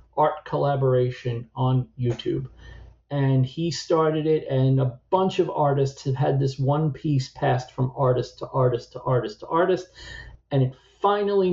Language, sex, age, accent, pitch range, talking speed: English, male, 40-59, American, 125-145 Hz, 155 wpm